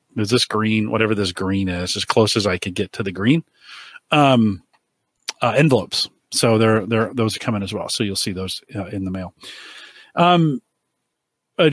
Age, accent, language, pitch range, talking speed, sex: 40-59, American, English, 105-135 Hz, 190 wpm, male